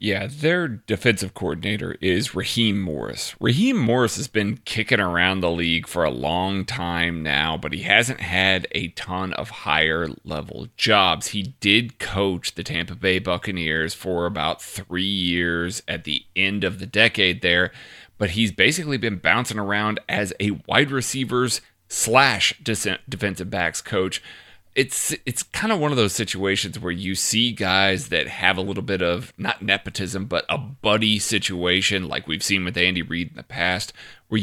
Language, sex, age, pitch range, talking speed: English, male, 30-49, 90-110 Hz, 165 wpm